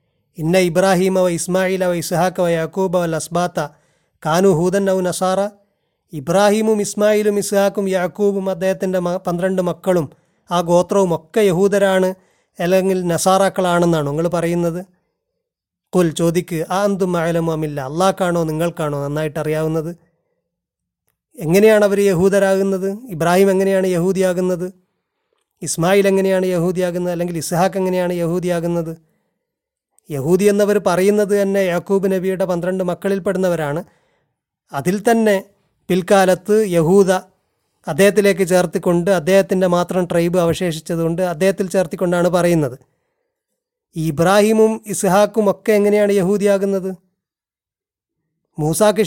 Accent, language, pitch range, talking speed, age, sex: native, Malayalam, 170-195 Hz, 95 wpm, 30-49, male